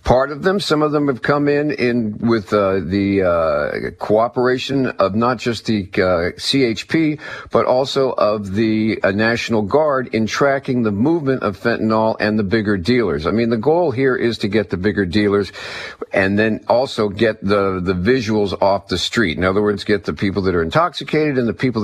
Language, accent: English, American